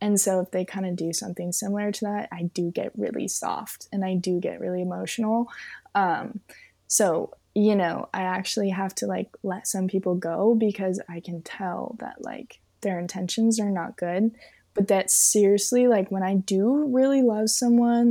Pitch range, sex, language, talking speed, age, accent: 190-235 Hz, female, English, 185 wpm, 20-39, American